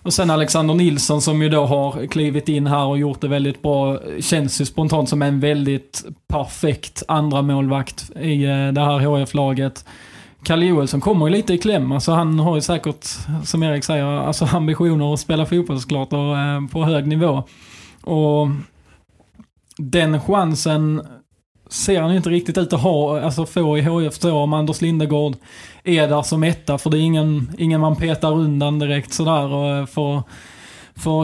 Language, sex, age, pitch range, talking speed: Swedish, male, 20-39, 145-160 Hz, 165 wpm